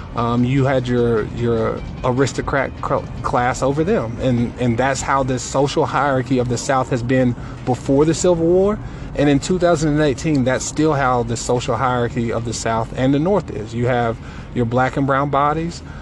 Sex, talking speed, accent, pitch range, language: male, 180 wpm, American, 125-140 Hz, English